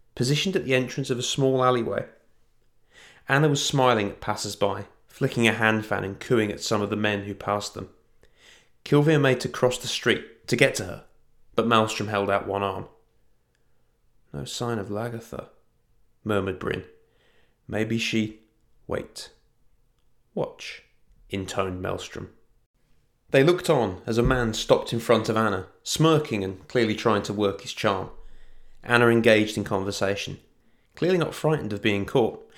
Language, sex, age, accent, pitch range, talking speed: English, male, 30-49, British, 105-125 Hz, 155 wpm